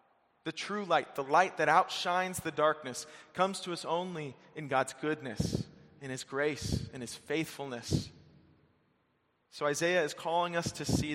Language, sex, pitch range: English, male, 140-170 Hz